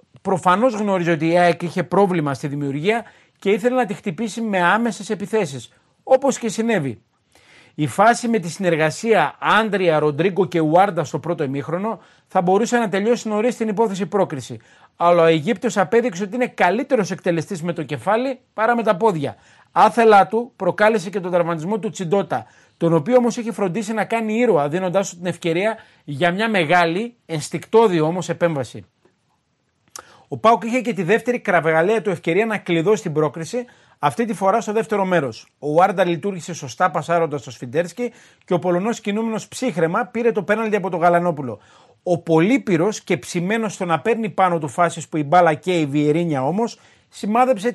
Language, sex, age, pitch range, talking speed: Greek, male, 30-49, 165-225 Hz, 170 wpm